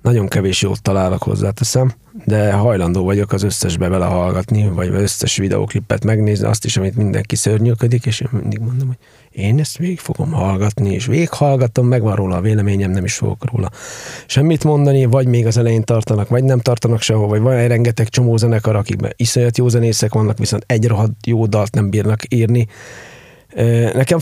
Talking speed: 175 wpm